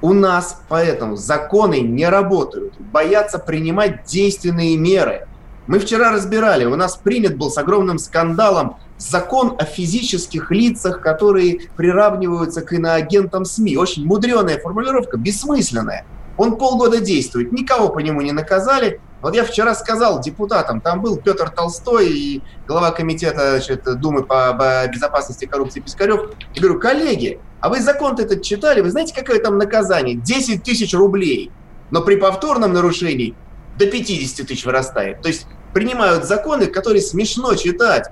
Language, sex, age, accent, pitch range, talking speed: Russian, male, 30-49, native, 165-220 Hz, 145 wpm